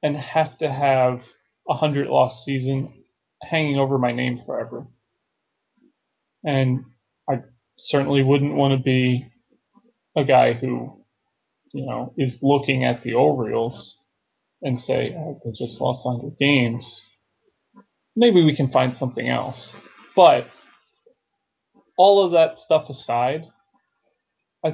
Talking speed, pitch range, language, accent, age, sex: 125 wpm, 130-155 Hz, English, American, 30-49, male